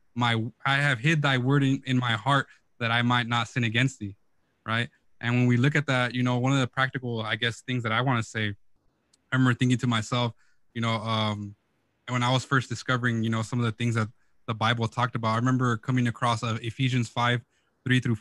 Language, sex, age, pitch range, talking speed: English, male, 20-39, 115-135 Hz, 230 wpm